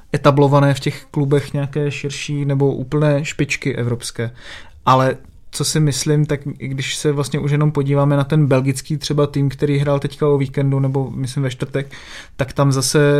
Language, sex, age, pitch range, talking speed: Czech, male, 20-39, 135-150 Hz, 175 wpm